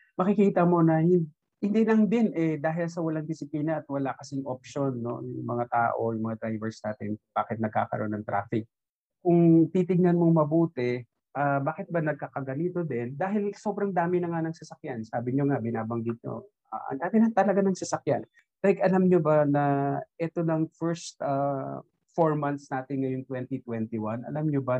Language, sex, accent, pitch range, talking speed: Filipino, male, native, 125-175 Hz, 175 wpm